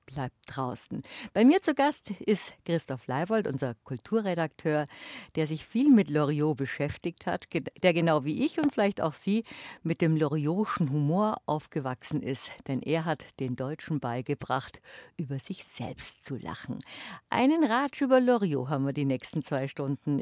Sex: female